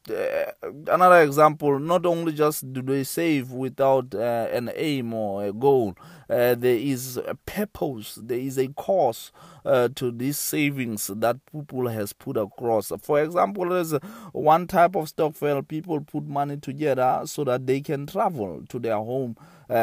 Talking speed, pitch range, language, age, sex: 170 wpm, 115-150 Hz, English, 20-39, male